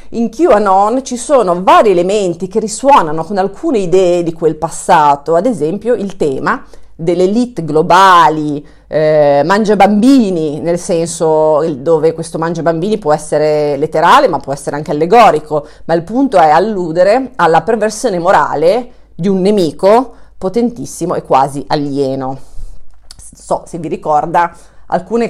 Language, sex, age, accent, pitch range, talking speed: Italian, female, 40-59, native, 155-220 Hz, 140 wpm